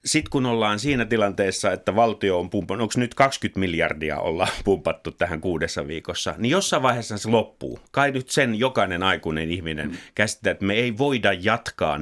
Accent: native